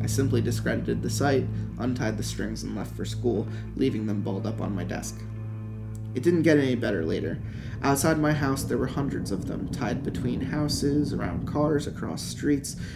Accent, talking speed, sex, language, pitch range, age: American, 185 wpm, male, English, 110-140 Hz, 20-39